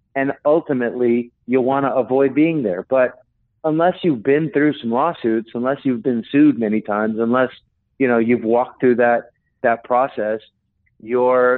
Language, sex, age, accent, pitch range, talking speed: English, male, 50-69, American, 115-140 Hz, 155 wpm